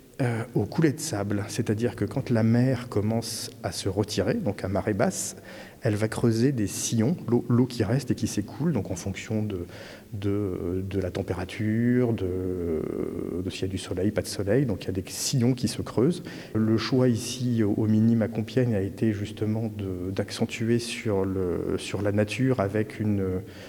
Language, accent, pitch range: French, French, 105-120 Hz